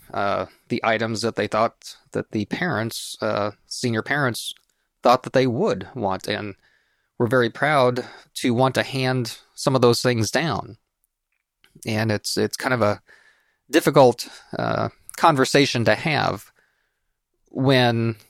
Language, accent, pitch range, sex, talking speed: English, American, 105-120 Hz, male, 140 wpm